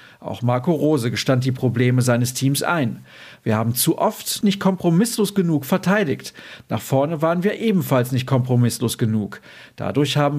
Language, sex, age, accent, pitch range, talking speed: German, male, 50-69, German, 120-185 Hz, 155 wpm